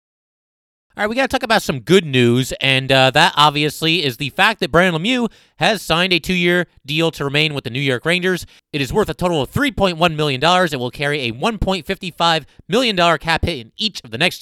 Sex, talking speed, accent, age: male, 225 wpm, American, 30-49